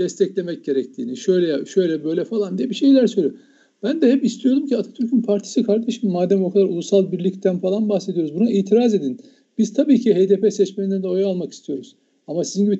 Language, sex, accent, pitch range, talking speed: Turkish, male, native, 175-235 Hz, 190 wpm